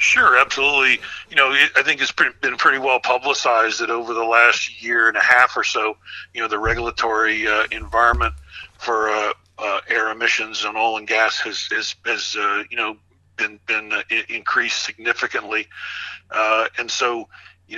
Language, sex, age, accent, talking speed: English, male, 40-59, American, 170 wpm